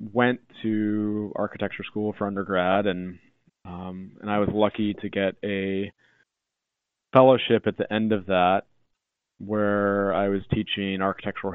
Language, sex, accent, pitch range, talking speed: English, male, American, 95-110 Hz, 135 wpm